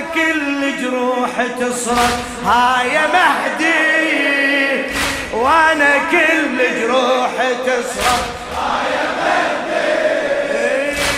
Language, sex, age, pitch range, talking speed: Arabic, male, 30-49, 255-290 Hz, 70 wpm